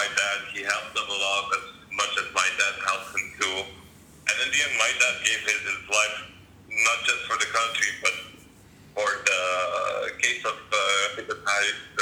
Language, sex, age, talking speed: English, male, 40-59, 180 wpm